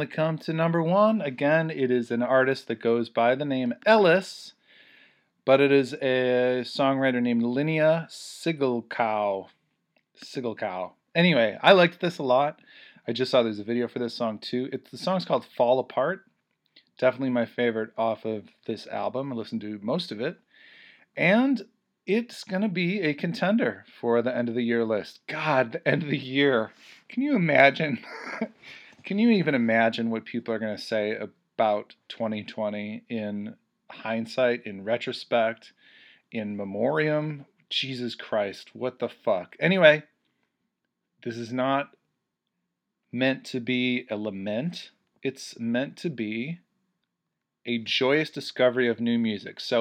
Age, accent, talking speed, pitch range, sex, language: 40-59, American, 150 wpm, 115-155 Hz, male, English